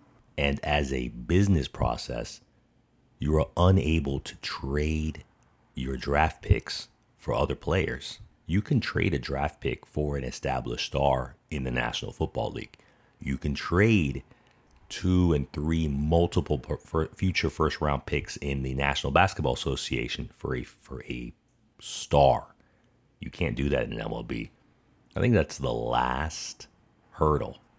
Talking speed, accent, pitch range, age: 135 wpm, American, 70-95 Hz, 40-59